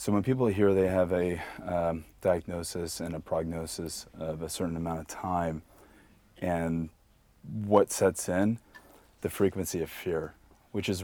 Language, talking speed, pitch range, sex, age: English, 150 wpm, 85-100 Hz, male, 30-49